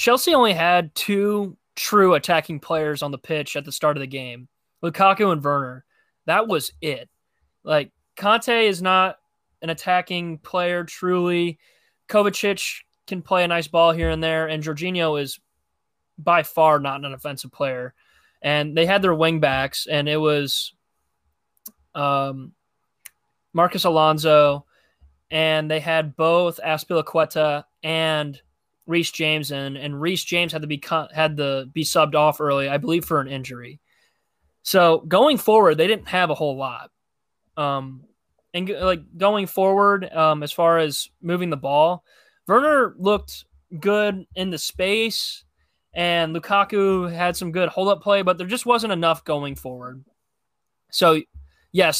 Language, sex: English, male